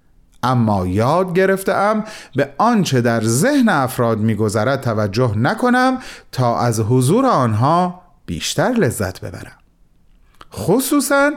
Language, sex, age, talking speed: Persian, male, 40-59, 105 wpm